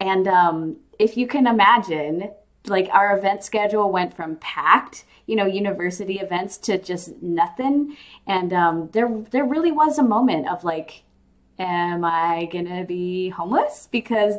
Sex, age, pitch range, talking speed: female, 20-39, 170-210 Hz, 150 wpm